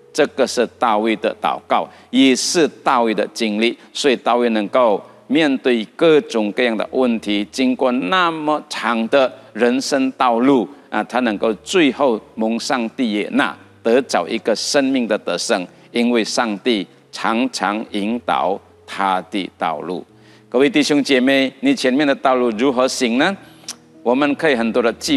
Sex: male